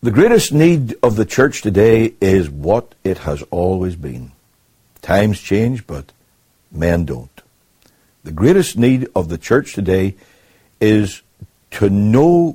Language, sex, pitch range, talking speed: English, male, 90-125 Hz, 135 wpm